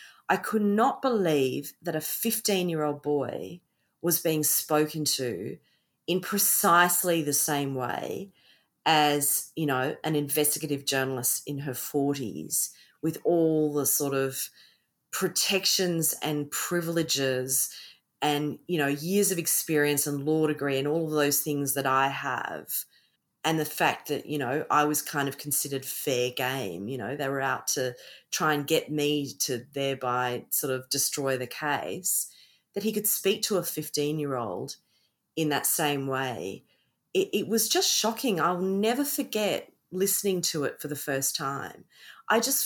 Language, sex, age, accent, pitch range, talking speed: English, female, 40-59, Australian, 140-195 Hz, 155 wpm